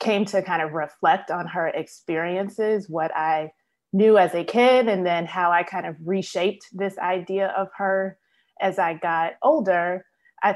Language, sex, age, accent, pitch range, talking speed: English, female, 20-39, American, 165-195 Hz, 170 wpm